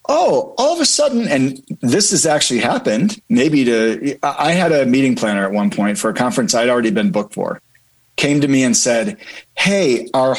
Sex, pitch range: male, 125-195 Hz